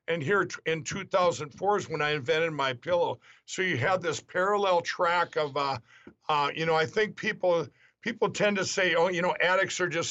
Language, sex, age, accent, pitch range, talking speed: English, male, 60-79, American, 155-185 Hz, 200 wpm